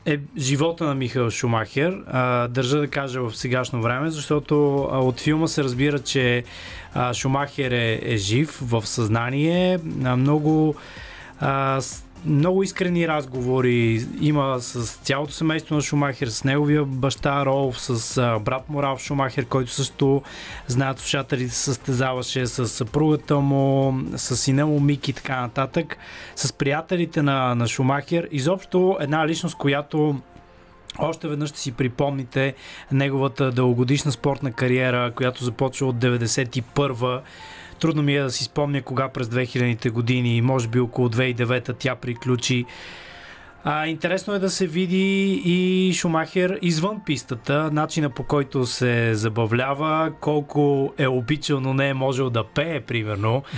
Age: 20-39